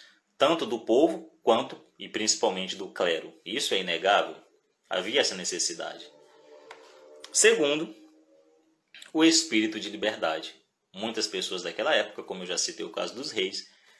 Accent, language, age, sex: Brazilian, Portuguese, 30-49, male